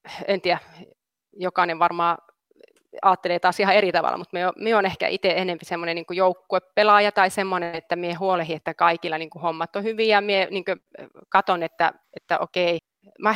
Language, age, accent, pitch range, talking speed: Finnish, 30-49, native, 170-205 Hz, 150 wpm